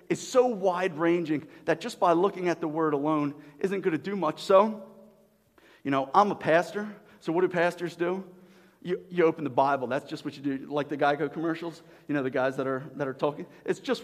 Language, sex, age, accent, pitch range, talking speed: English, male, 40-59, American, 175-220 Hz, 220 wpm